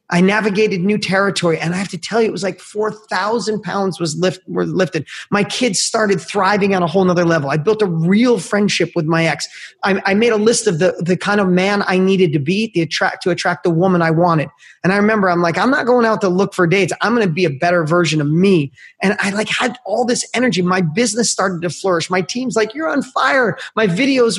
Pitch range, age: 165-200 Hz, 30-49